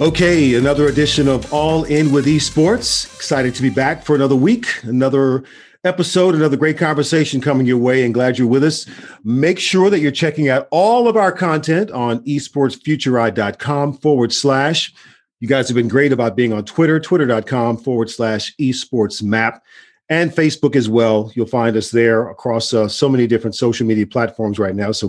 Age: 40-59